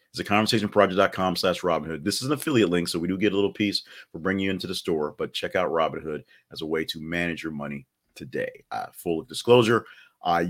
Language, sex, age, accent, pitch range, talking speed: English, male, 40-59, American, 80-100 Hz, 230 wpm